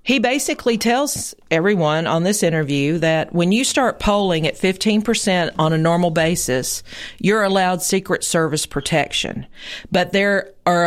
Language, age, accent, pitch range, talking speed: English, 40-59, American, 165-205 Hz, 145 wpm